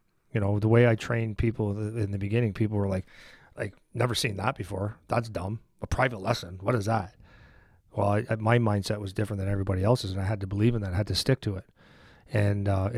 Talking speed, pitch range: 225 wpm, 100-115 Hz